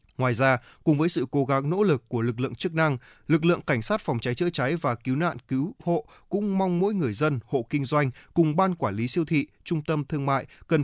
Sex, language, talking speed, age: male, Vietnamese, 255 wpm, 20-39